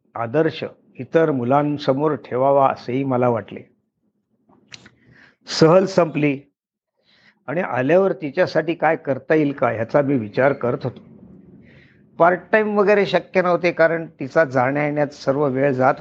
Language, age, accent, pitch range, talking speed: Marathi, 50-69, native, 130-165 Hz, 125 wpm